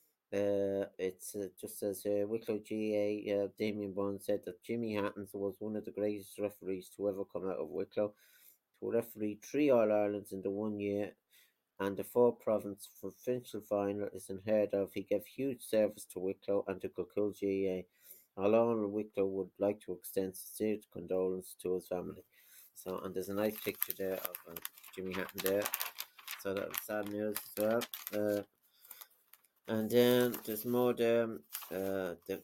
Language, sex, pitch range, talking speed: English, male, 95-110 Hz, 175 wpm